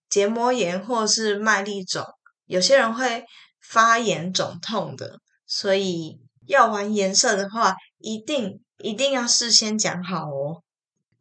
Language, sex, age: Chinese, female, 10-29